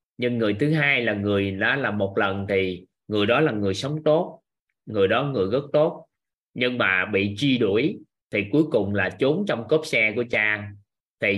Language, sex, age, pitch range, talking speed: Vietnamese, male, 20-39, 100-130 Hz, 205 wpm